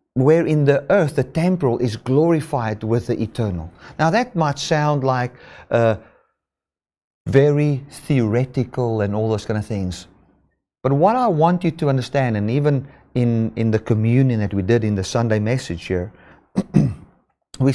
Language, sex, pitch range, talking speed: English, male, 110-160 Hz, 160 wpm